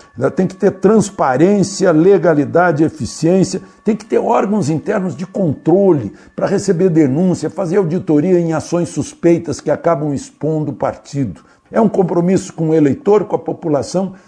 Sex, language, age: male, Portuguese, 60-79